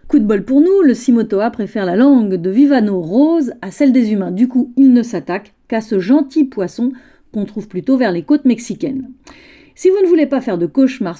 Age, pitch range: 40-59, 220-290 Hz